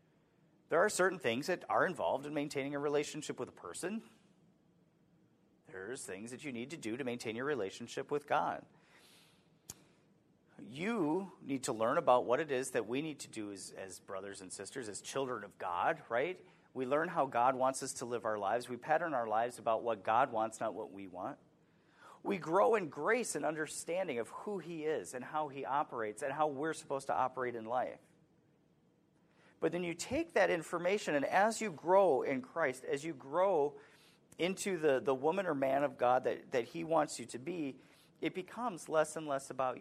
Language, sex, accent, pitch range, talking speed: English, male, American, 130-170 Hz, 195 wpm